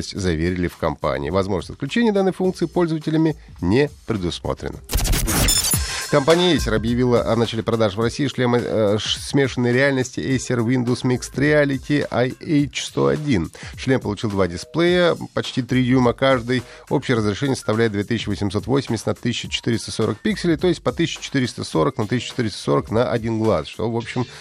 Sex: male